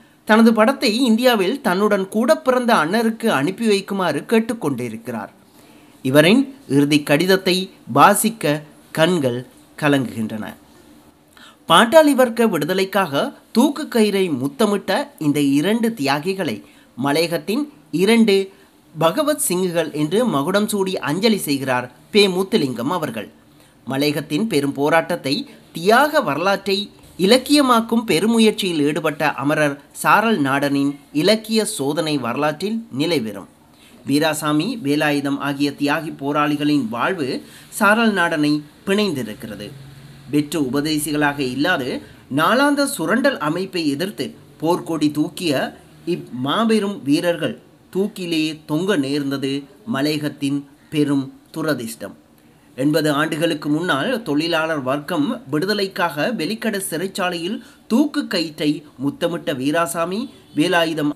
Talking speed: 90 wpm